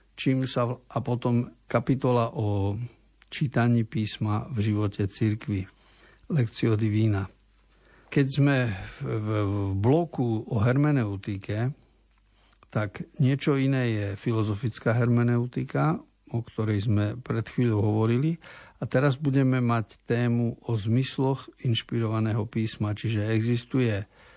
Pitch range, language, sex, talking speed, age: 105-125 Hz, Slovak, male, 100 wpm, 60-79